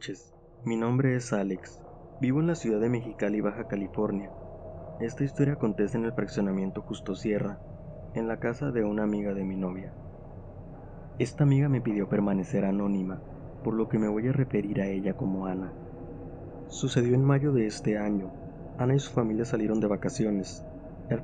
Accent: Mexican